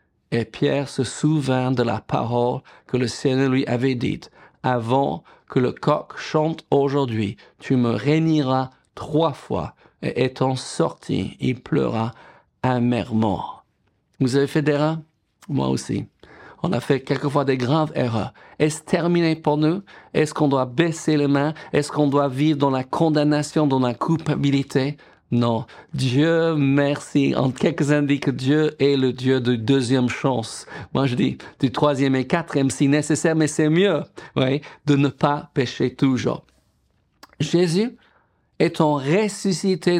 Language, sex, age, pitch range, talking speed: French, male, 50-69, 130-160 Hz, 150 wpm